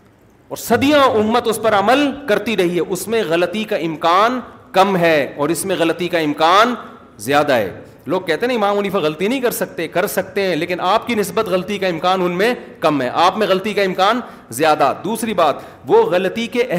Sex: male